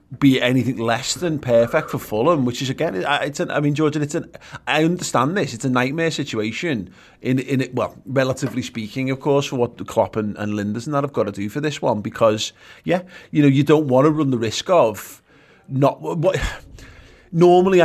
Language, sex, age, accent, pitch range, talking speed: English, male, 30-49, British, 115-150 Hz, 220 wpm